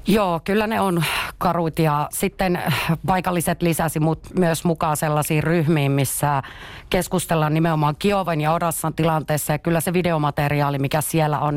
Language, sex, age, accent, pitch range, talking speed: Finnish, female, 30-49, native, 145-170 Hz, 140 wpm